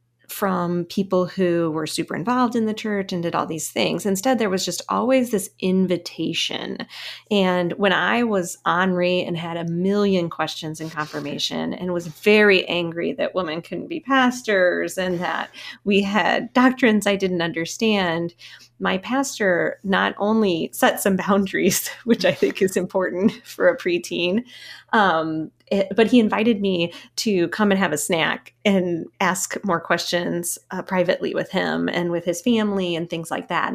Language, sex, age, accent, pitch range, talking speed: English, female, 30-49, American, 170-205 Hz, 165 wpm